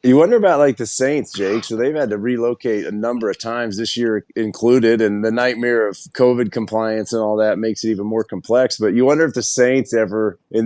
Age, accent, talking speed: 30-49, American, 230 wpm